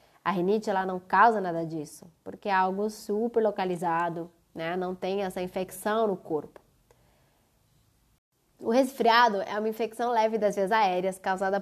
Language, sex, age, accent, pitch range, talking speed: Portuguese, female, 20-39, Brazilian, 185-240 Hz, 150 wpm